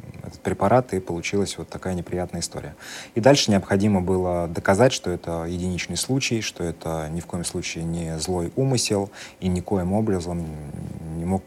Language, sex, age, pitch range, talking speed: Russian, male, 30-49, 80-100 Hz, 160 wpm